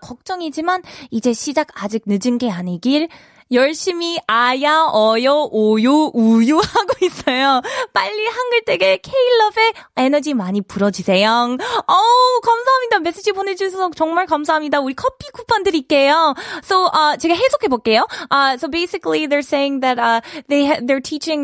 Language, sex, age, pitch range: Korean, female, 20-39, 235-355 Hz